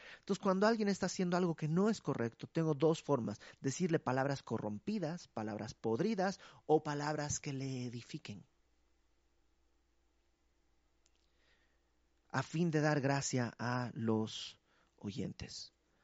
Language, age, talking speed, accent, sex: Spanish, 40-59, 115 wpm, Mexican, male